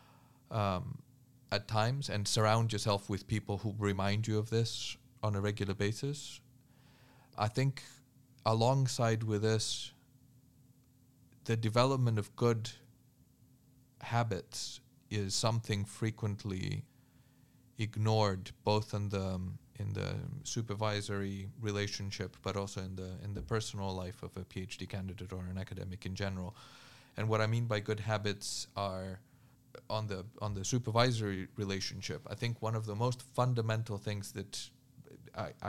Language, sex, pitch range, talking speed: English, male, 105-125 Hz, 135 wpm